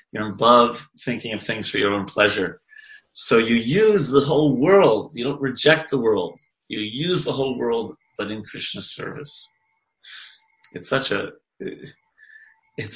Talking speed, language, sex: 155 wpm, English, male